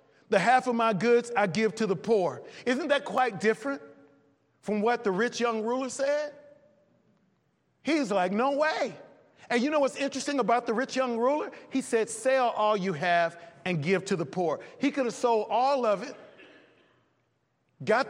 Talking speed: 180 wpm